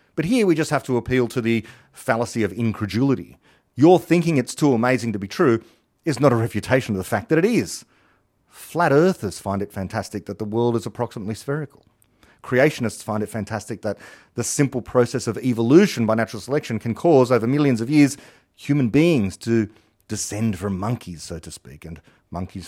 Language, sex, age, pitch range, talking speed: English, male, 40-59, 110-145 Hz, 190 wpm